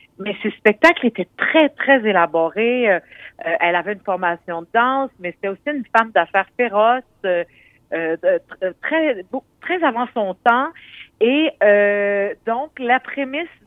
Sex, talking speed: female, 160 wpm